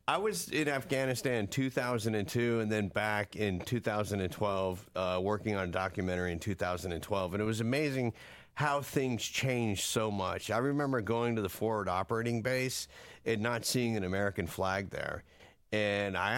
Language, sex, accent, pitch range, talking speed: English, male, American, 105-130 Hz, 160 wpm